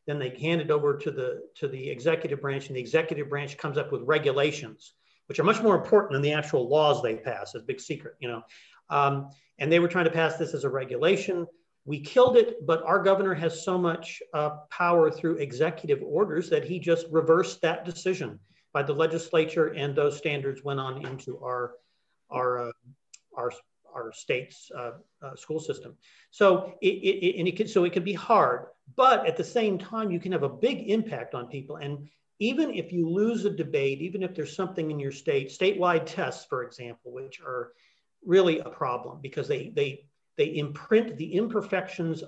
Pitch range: 145-190 Hz